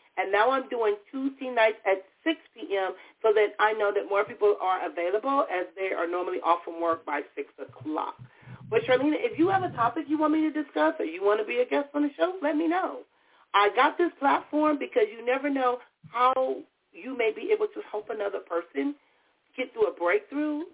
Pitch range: 195-320 Hz